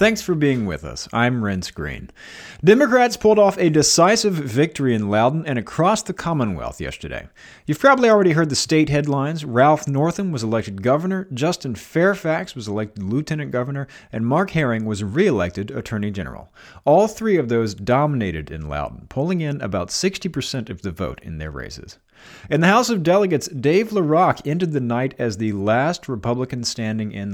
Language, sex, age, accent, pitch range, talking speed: English, male, 40-59, American, 105-160 Hz, 175 wpm